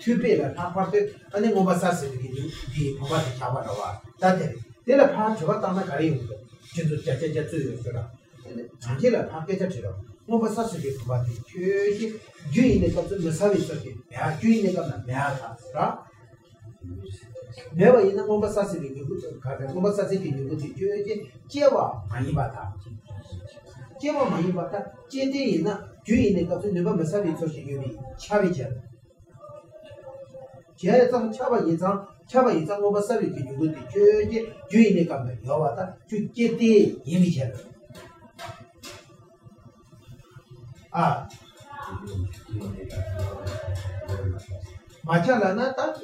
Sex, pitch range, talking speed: male, 125-205 Hz, 30 wpm